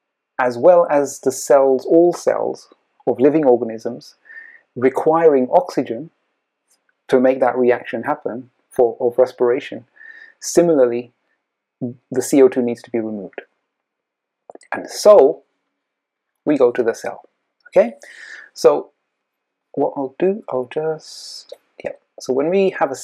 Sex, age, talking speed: male, 30-49, 120 wpm